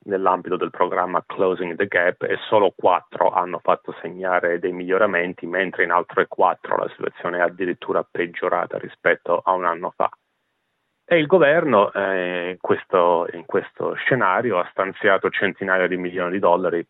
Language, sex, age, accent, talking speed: Italian, male, 30-49, native, 155 wpm